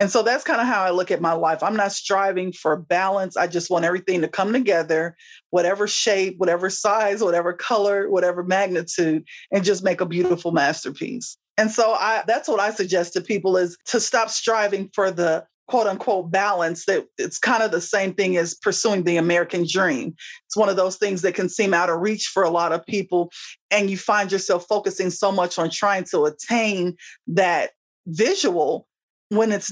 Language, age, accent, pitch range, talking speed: English, 30-49, American, 180-220 Hz, 195 wpm